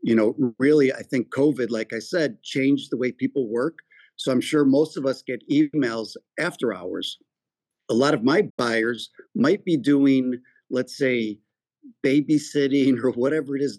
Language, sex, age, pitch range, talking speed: English, male, 50-69, 115-145 Hz, 170 wpm